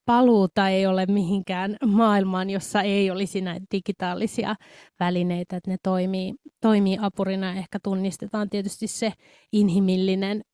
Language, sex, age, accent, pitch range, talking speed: Finnish, female, 20-39, native, 190-220 Hz, 120 wpm